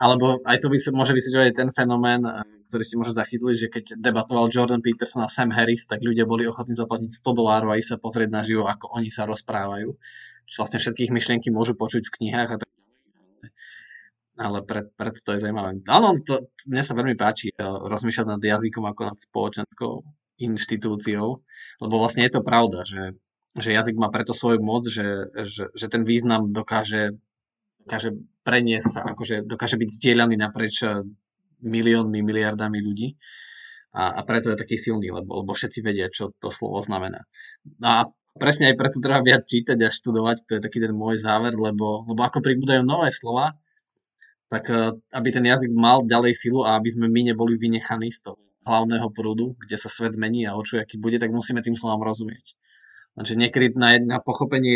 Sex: male